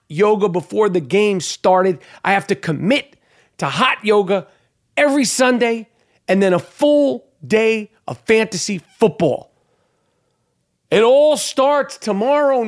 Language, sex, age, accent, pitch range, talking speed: English, male, 40-59, American, 180-245 Hz, 125 wpm